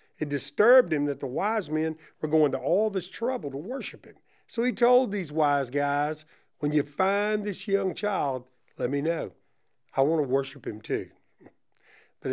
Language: English